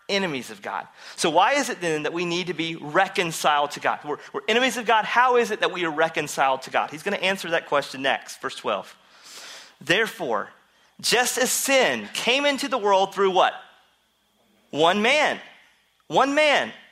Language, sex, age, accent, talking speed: English, male, 40-59, American, 190 wpm